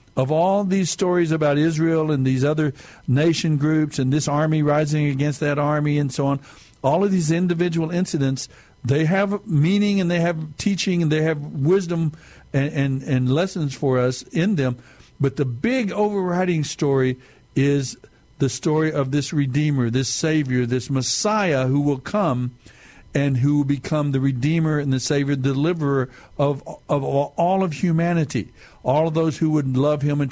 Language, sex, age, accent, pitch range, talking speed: English, male, 60-79, American, 130-160 Hz, 170 wpm